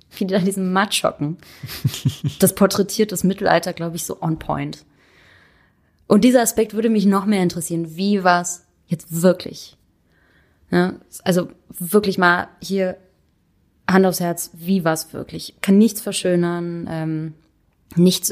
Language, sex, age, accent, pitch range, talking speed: German, female, 20-39, German, 165-195 Hz, 140 wpm